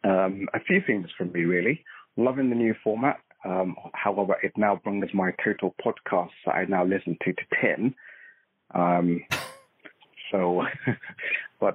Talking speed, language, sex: 150 wpm, English, male